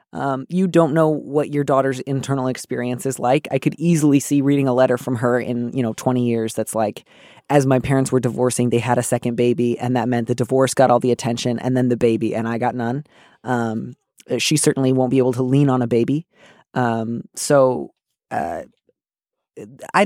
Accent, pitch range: American, 120-140 Hz